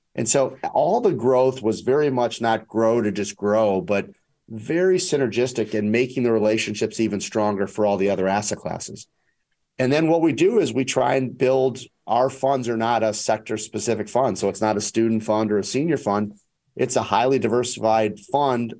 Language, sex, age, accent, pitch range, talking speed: English, male, 40-59, American, 105-125 Hz, 190 wpm